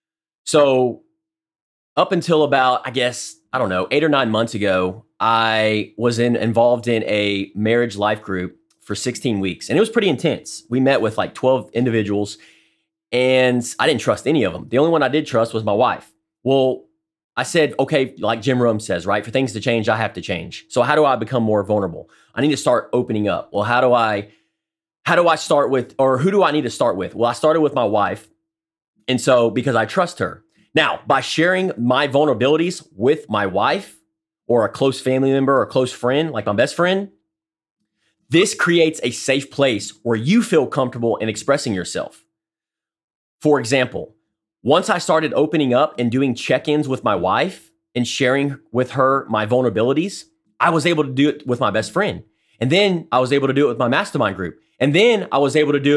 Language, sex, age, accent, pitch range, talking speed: English, male, 30-49, American, 110-155 Hz, 205 wpm